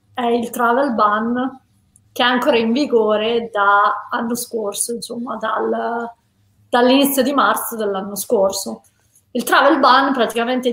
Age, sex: 30-49, female